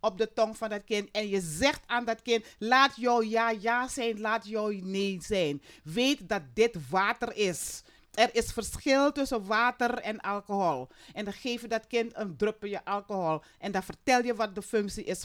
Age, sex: 40-59, female